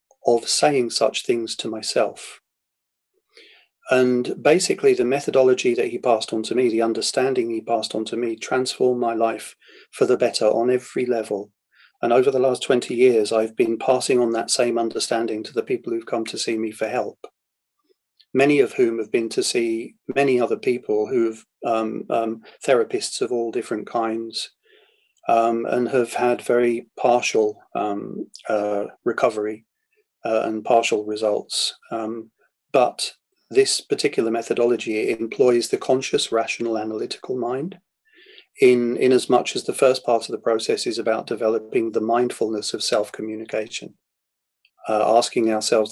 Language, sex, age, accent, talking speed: English, male, 40-59, British, 155 wpm